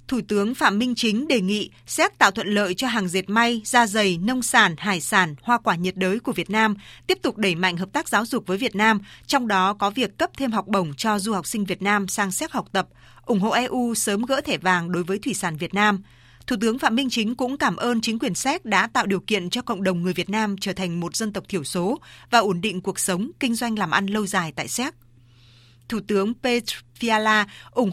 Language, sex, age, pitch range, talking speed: Vietnamese, female, 20-39, 190-240 Hz, 250 wpm